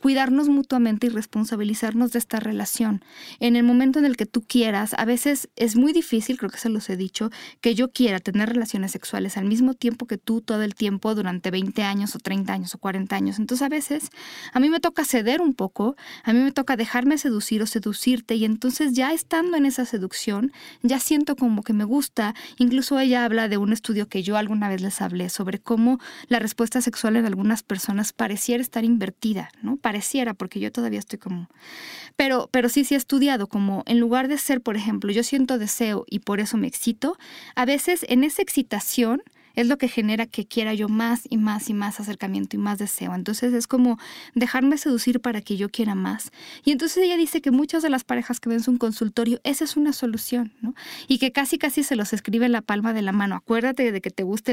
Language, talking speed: Spanish, 220 wpm